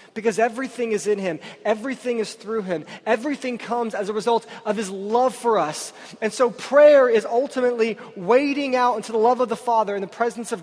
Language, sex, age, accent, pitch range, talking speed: English, male, 20-39, American, 160-235 Hz, 205 wpm